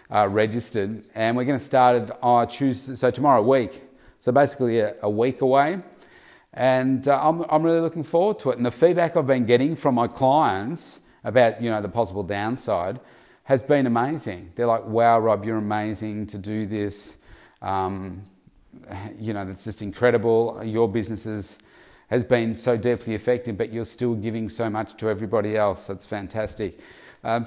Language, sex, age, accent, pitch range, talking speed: English, male, 40-59, Australian, 110-130 Hz, 170 wpm